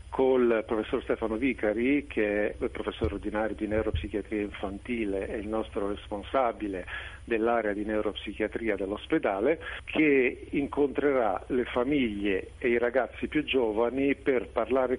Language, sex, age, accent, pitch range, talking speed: Italian, male, 40-59, native, 105-125 Hz, 125 wpm